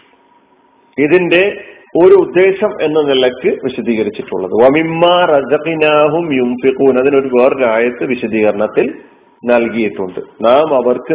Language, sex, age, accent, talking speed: Malayalam, male, 40-59, native, 80 wpm